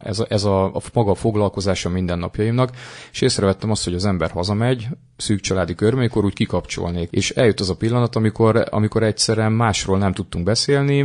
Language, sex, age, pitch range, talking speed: Hungarian, male, 30-49, 95-115 Hz, 175 wpm